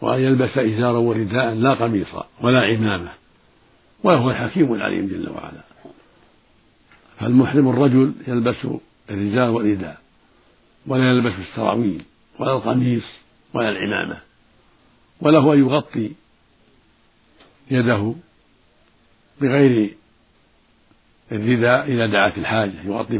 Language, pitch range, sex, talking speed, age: Arabic, 110-130 Hz, male, 90 wpm, 60-79